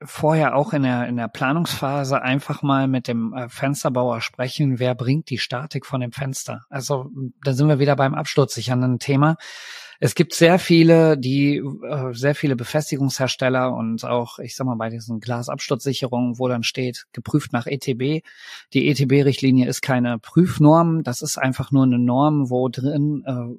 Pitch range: 125-145 Hz